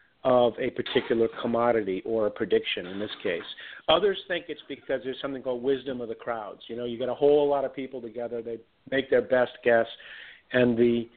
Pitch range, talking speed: 125-170 Hz, 205 wpm